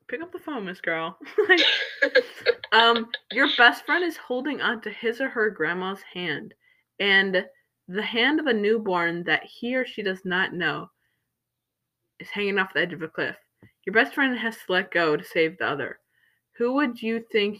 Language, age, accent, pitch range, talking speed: English, 20-39, American, 170-245 Hz, 190 wpm